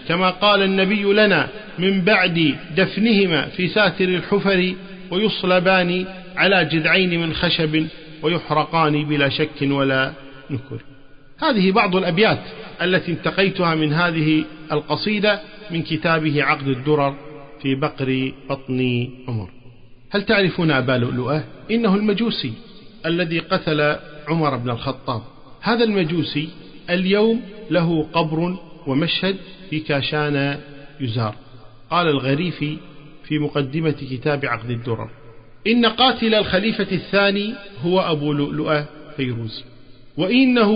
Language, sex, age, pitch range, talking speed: Arabic, male, 50-69, 145-195 Hz, 105 wpm